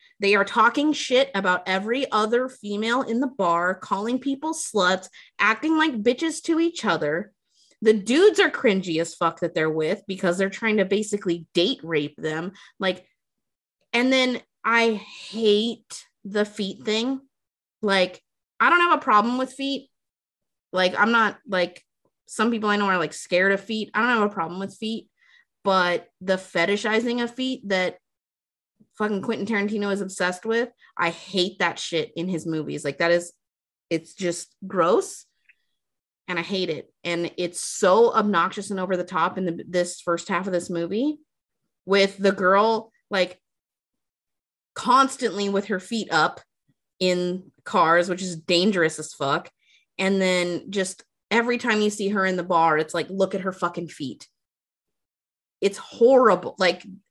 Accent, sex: American, female